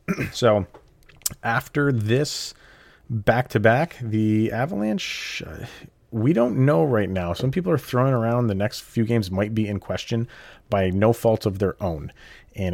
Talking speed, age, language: 145 wpm, 30-49, English